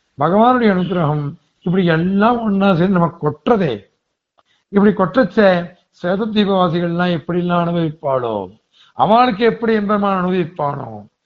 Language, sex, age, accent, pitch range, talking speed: Tamil, male, 60-79, native, 155-205 Hz, 80 wpm